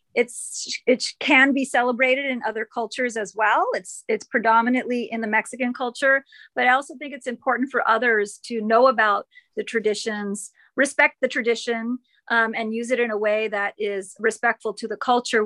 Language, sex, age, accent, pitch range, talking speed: English, female, 30-49, American, 205-245 Hz, 180 wpm